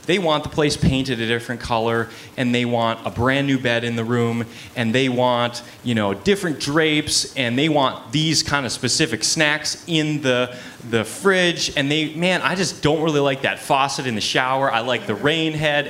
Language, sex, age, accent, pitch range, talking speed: English, male, 20-39, American, 115-155 Hz, 210 wpm